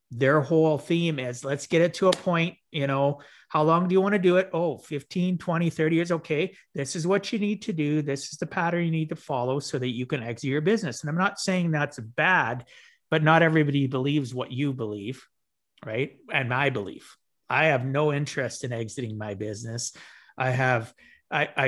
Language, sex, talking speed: English, male, 210 wpm